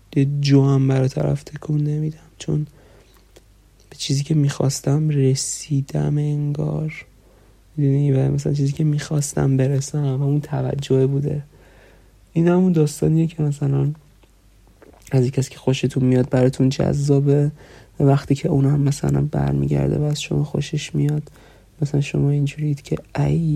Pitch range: 125-155 Hz